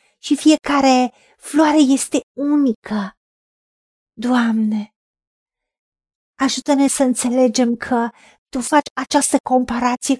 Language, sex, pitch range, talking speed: Romanian, female, 230-280 Hz, 80 wpm